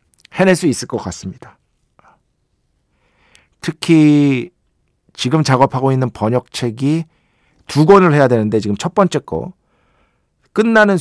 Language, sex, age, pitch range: Korean, male, 50-69, 105-170 Hz